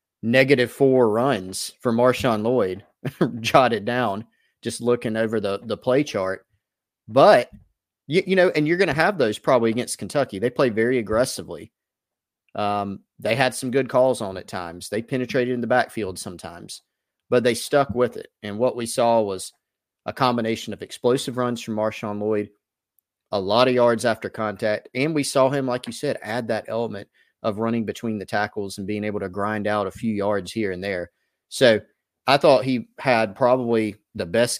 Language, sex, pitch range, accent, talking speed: English, male, 105-125 Hz, American, 185 wpm